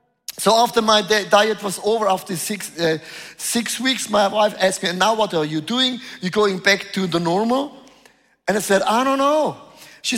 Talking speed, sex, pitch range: 205 wpm, male, 200-260 Hz